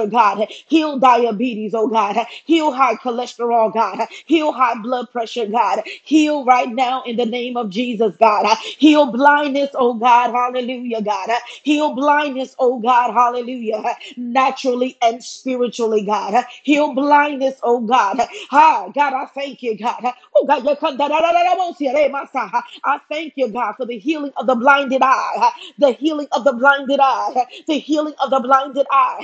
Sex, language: female, English